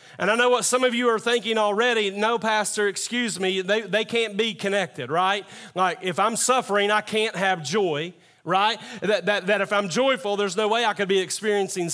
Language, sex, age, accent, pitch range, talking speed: English, male, 40-59, American, 190-220 Hz, 210 wpm